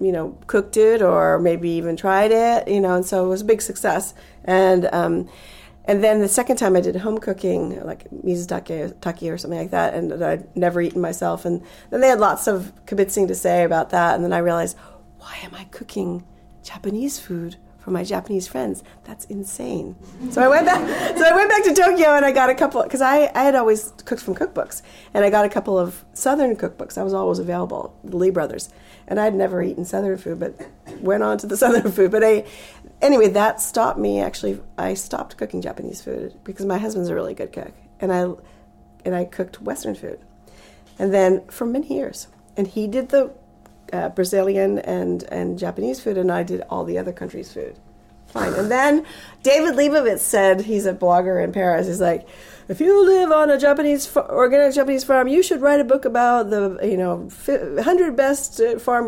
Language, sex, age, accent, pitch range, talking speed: English, female, 40-59, American, 180-255 Hz, 205 wpm